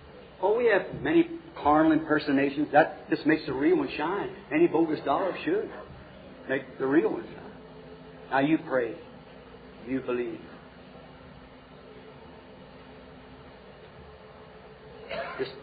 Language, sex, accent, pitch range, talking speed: English, male, American, 130-170 Hz, 110 wpm